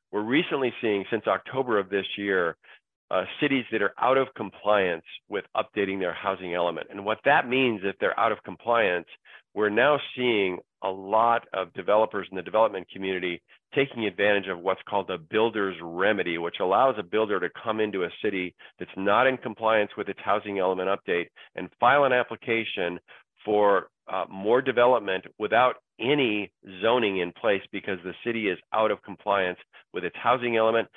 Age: 40-59